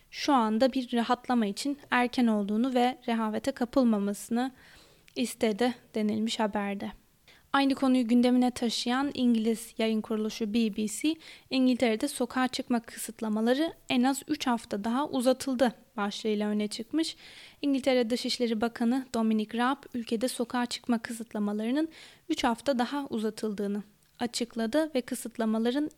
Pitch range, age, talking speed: 225-265 Hz, 10-29, 115 wpm